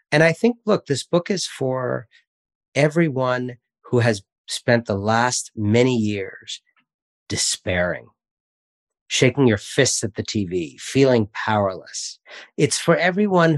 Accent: American